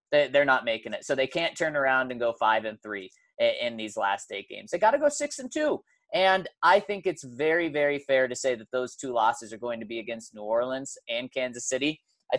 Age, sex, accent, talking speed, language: 20-39, male, American, 240 wpm, English